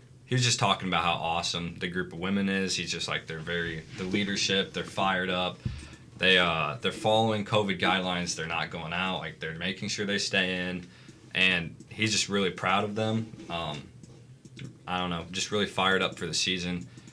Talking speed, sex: 200 wpm, male